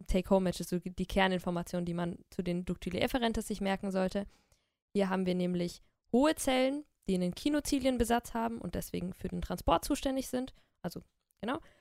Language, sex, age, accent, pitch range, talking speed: German, female, 20-39, German, 175-215 Hz, 165 wpm